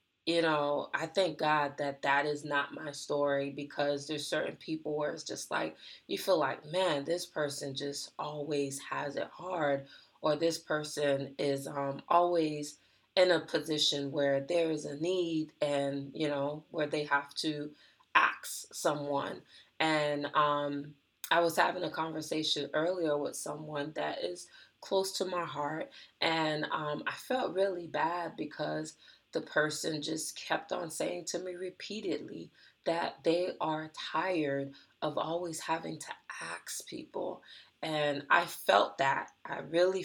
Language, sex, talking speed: English, female, 150 wpm